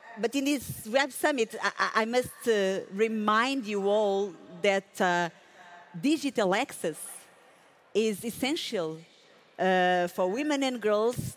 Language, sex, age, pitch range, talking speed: English, female, 50-69, 190-250 Hz, 120 wpm